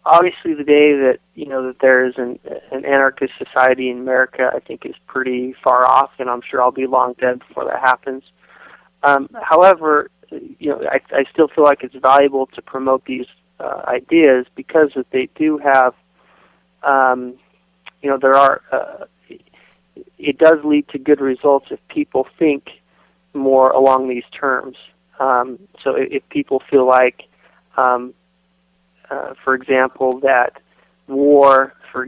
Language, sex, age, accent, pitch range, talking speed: English, male, 30-49, American, 130-140 Hz, 155 wpm